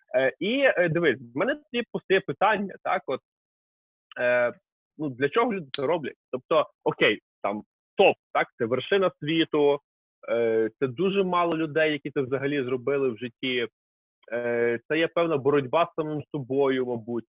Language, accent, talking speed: Ukrainian, native, 145 wpm